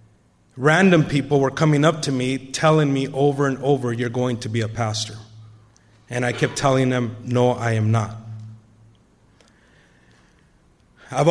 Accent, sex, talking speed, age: American, male, 150 wpm, 30-49